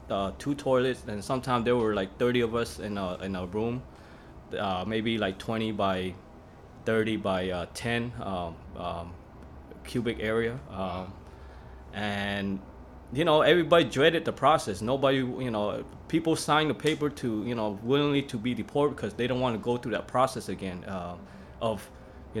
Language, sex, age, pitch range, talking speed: English, male, 20-39, 95-125 Hz, 170 wpm